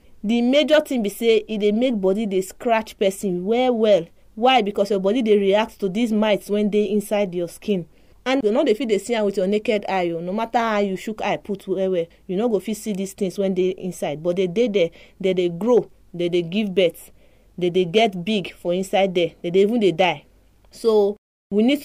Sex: female